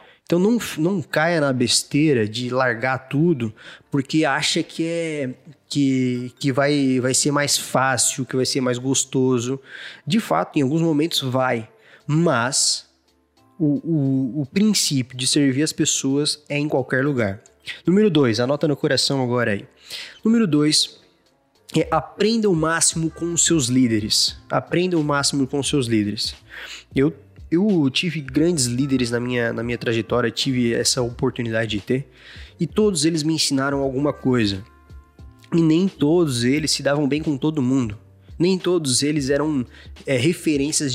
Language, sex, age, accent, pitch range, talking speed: Portuguese, male, 20-39, Brazilian, 125-155 Hz, 150 wpm